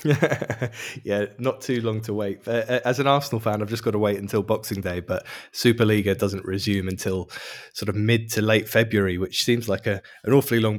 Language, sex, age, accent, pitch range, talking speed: English, male, 20-39, British, 105-125 Hz, 205 wpm